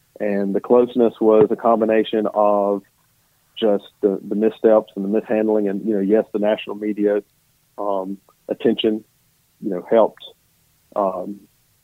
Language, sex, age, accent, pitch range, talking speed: English, male, 40-59, American, 105-120 Hz, 135 wpm